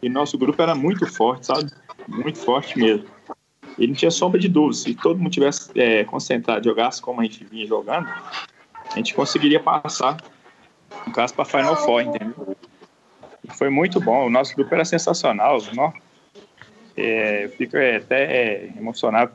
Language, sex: Portuguese, male